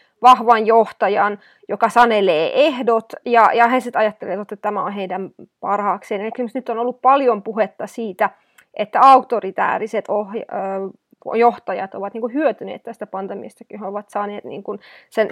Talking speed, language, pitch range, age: 140 wpm, Finnish, 205-240 Hz, 20-39